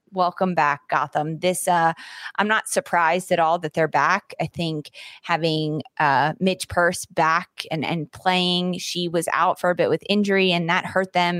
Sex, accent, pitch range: female, American, 160-195 Hz